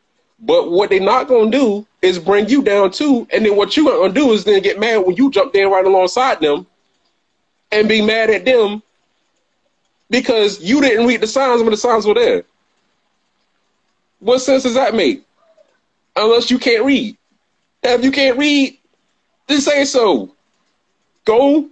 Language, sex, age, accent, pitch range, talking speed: English, male, 30-49, American, 205-275 Hz, 175 wpm